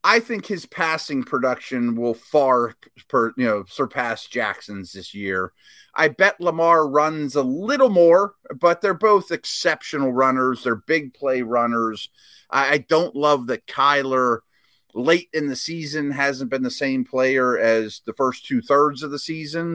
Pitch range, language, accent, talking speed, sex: 125-165 Hz, English, American, 155 wpm, male